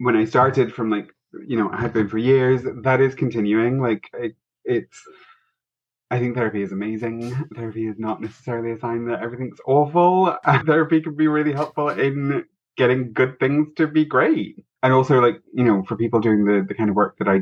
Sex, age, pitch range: male, 20-39, 110-135 Hz